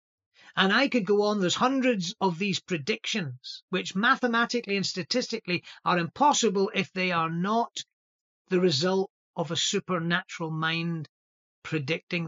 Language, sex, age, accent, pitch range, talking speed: English, male, 40-59, British, 155-205 Hz, 130 wpm